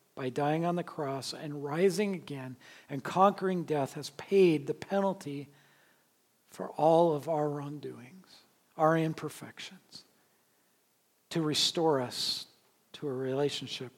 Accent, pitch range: American, 130-155 Hz